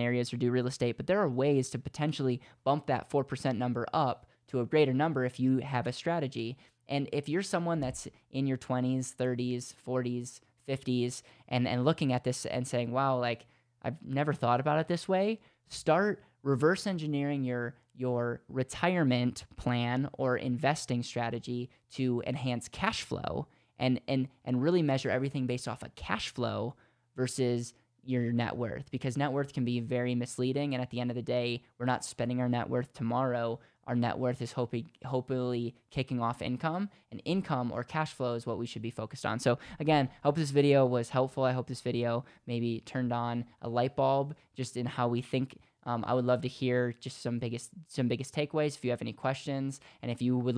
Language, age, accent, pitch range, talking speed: English, 10-29, American, 120-135 Hz, 200 wpm